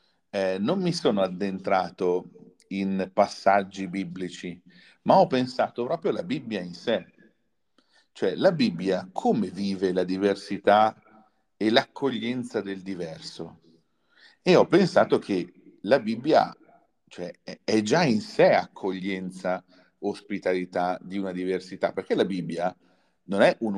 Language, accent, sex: Italian, native, male